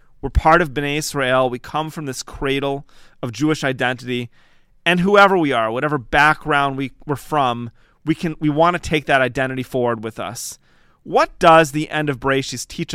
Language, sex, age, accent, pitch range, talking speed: English, male, 30-49, American, 130-170 Hz, 180 wpm